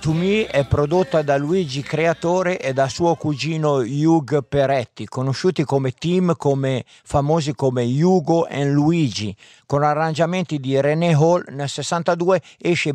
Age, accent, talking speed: 50-69, native, 140 wpm